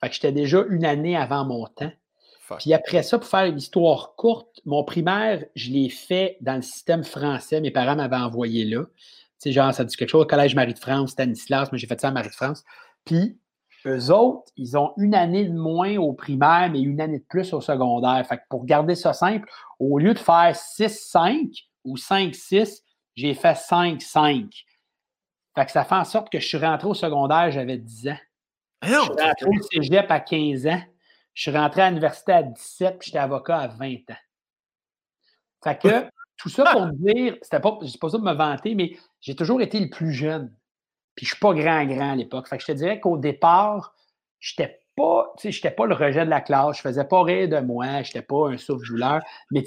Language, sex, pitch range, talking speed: French, male, 135-180 Hz, 205 wpm